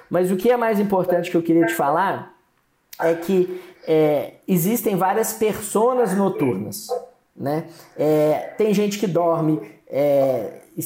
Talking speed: 125 wpm